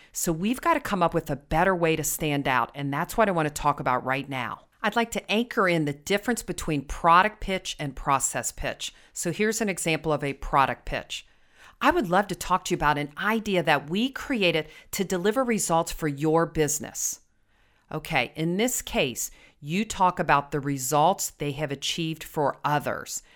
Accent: American